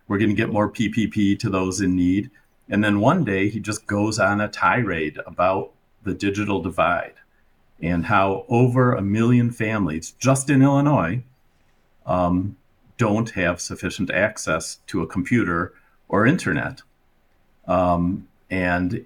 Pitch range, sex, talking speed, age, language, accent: 95-120 Hz, male, 140 wpm, 50-69, English, American